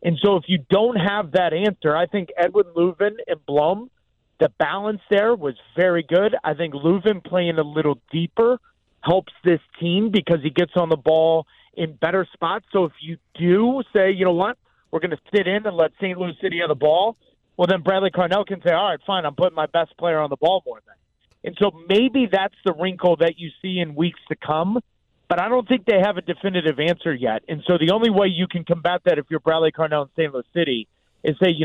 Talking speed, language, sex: 235 wpm, English, male